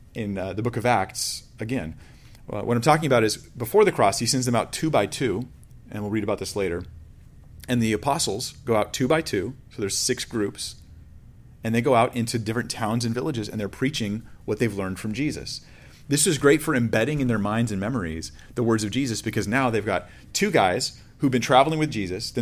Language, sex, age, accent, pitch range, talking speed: English, male, 30-49, American, 105-135 Hz, 225 wpm